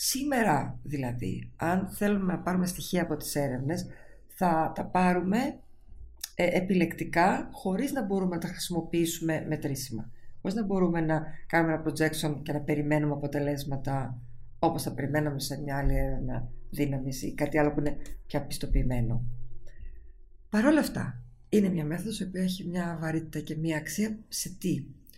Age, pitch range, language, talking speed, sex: 50-69, 140-185 Hz, Greek, 160 wpm, female